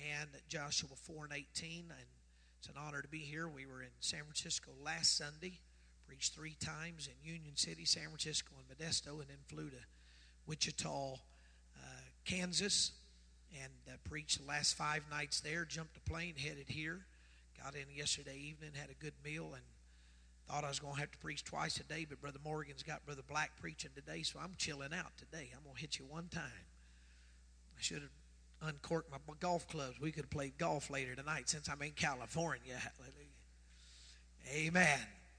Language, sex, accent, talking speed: English, male, American, 185 wpm